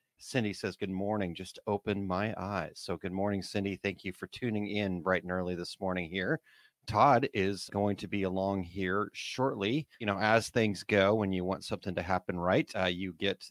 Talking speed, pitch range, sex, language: 205 wpm, 95-110 Hz, male, English